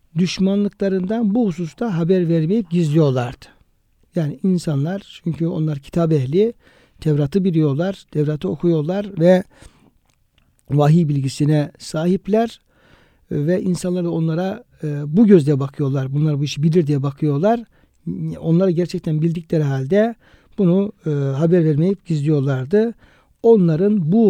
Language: Turkish